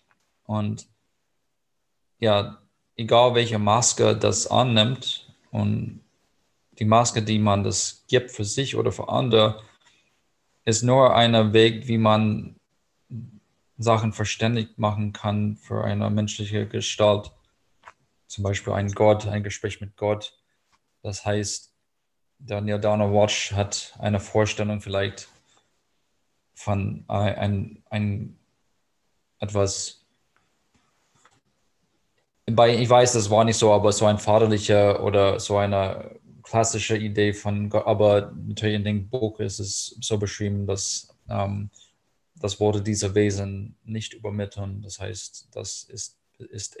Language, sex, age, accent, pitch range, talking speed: German, male, 20-39, German, 100-110 Hz, 120 wpm